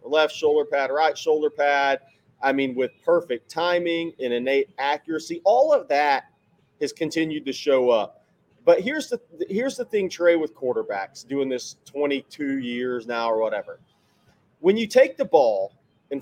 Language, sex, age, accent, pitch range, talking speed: English, male, 40-59, American, 130-195 Hz, 165 wpm